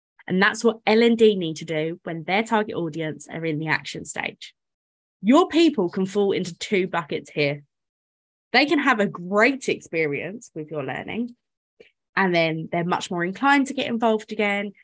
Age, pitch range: 20-39, 160-230 Hz